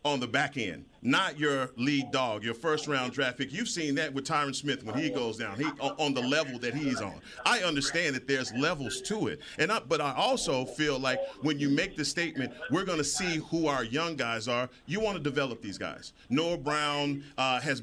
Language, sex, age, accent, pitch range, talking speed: English, male, 40-59, American, 135-160 Hz, 225 wpm